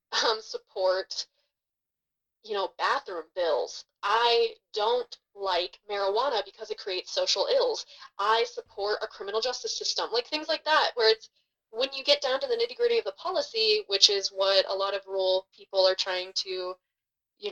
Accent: American